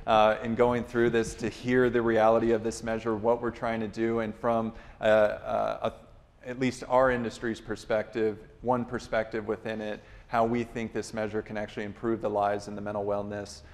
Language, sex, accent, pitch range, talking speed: English, male, American, 115-130 Hz, 190 wpm